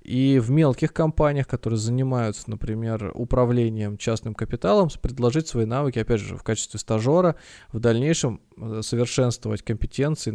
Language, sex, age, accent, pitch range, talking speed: Russian, male, 20-39, native, 110-135 Hz, 130 wpm